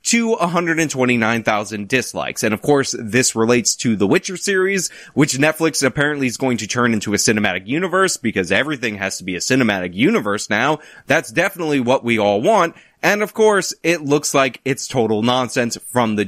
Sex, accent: male, American